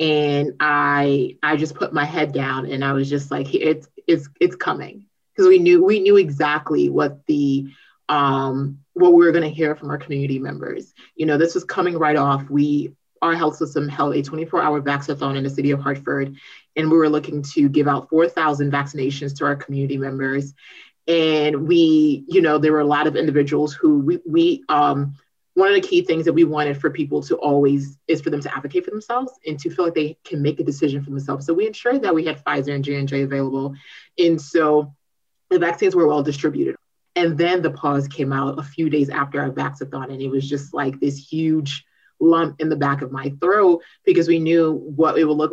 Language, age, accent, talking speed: English, 30-49, American, 215 wpm